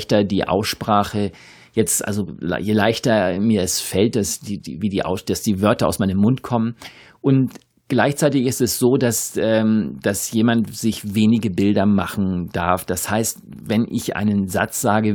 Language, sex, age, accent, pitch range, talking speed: German, male, 50-69, German, 100-115 Hz, 170 wpm